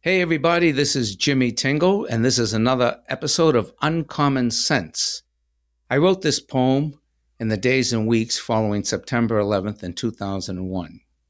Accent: American